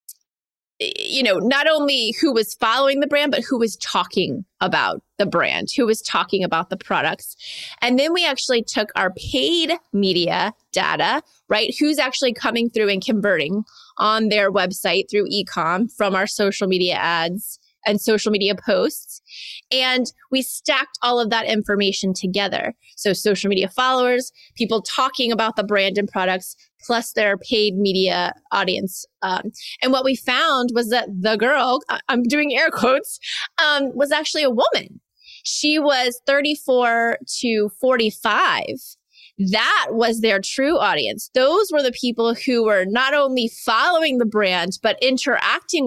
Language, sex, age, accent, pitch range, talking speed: English, female, 20-39, American, 200-265 Hz, 155 wpm